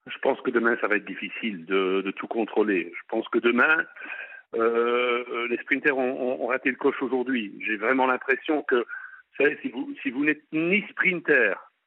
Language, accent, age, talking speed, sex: French, French, 50-69, 190 wpm, male